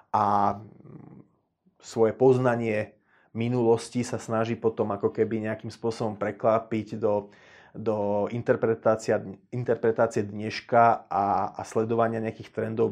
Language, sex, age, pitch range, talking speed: Slovak, male, 30-49, 110-120 Hz, 100 wpm